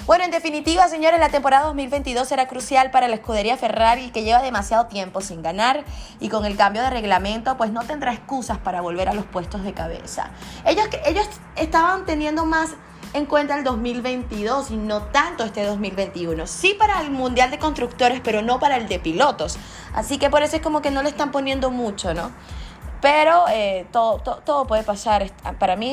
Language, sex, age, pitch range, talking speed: Spanish, female, 20-39, 205-290 Hz, 195 wpm